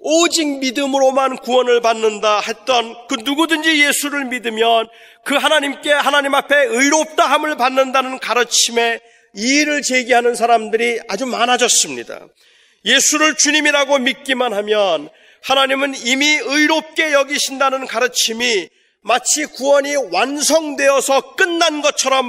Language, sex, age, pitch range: Korean, male, 40-59, 245-300 Hz